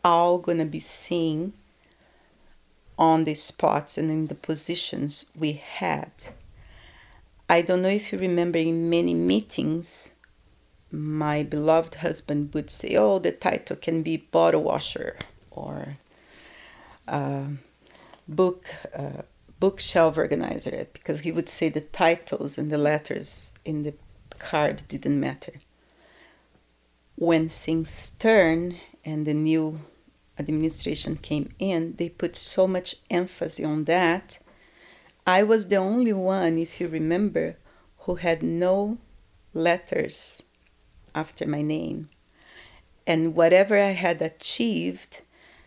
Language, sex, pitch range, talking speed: English, female, 150-175 Hz, 120 wpm